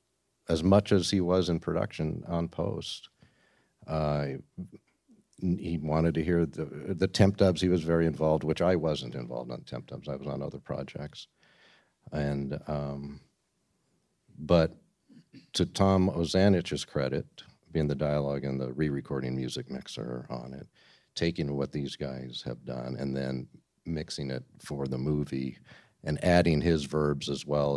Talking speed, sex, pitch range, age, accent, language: 150 wpm, male, 65-85 Hz, 50-69, American, English